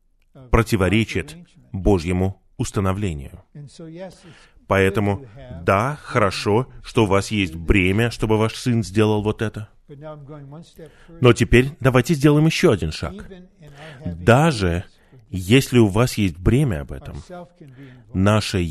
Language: Russian